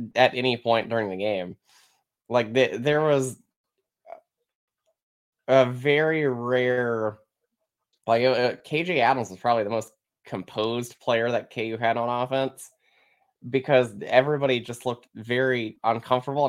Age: 20-39